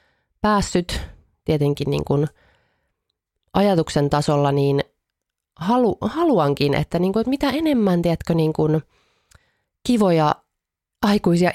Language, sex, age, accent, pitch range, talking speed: Finnish, female, 30-49, native, 150-210 Hz, 100 wpm